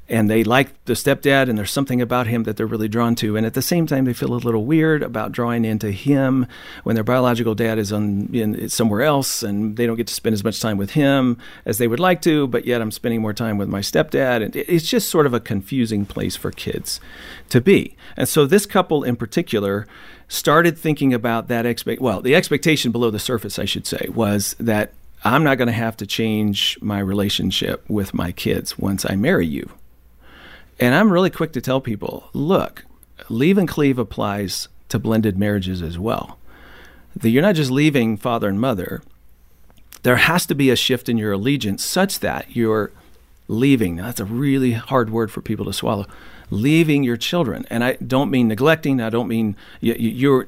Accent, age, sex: American, 40-59, male